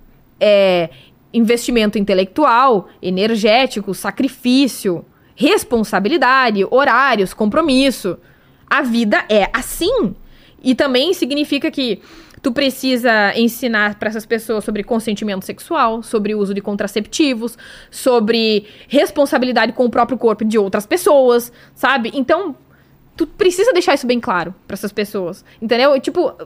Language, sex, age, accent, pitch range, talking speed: Portuguese, female, 20-39, Brazilian, 215-280 Hz, 115 wpm